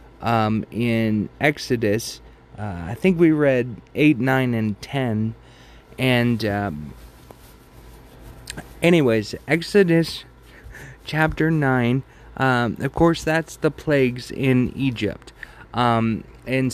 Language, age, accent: English, 30-49, American